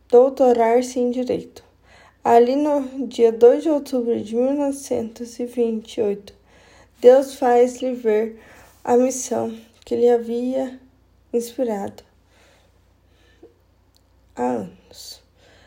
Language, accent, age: Portuguese, Brazilian, 10-29